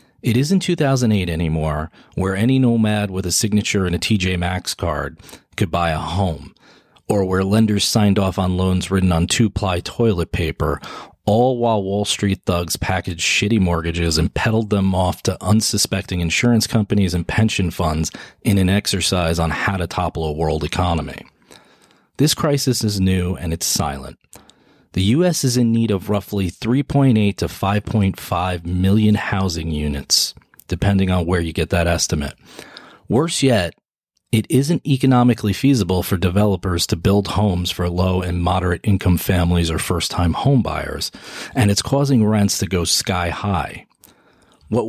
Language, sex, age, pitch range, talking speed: English, male, 40-59, 85-110 Hz, 150 wpm